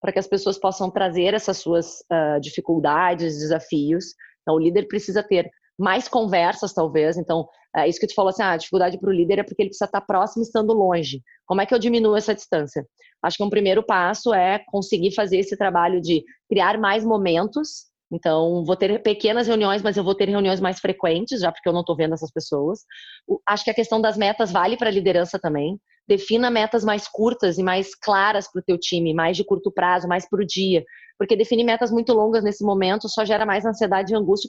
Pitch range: 180-225 Hz